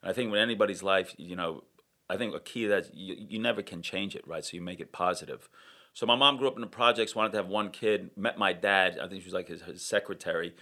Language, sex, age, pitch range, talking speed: English, male, 30-49, 95-110 Hz, 285 wpm